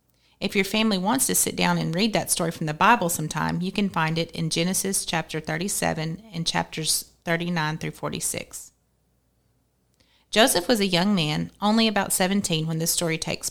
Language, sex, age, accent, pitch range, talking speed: English, female, 30-49, American, 165-200 Hz, 180 wpm